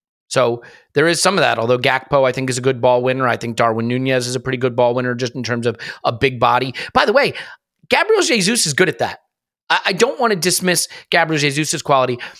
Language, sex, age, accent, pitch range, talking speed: English, male, 30-49, American, 125-150 Hz, 240 wpm